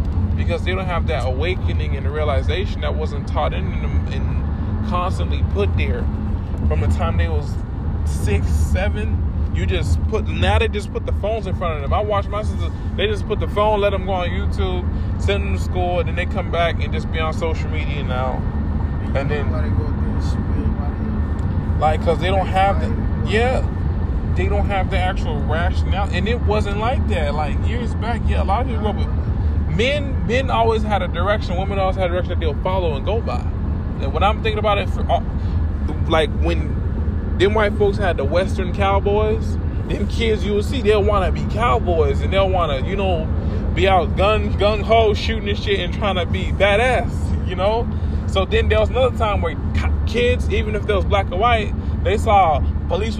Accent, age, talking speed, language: American, 20-39, 200 wpm, English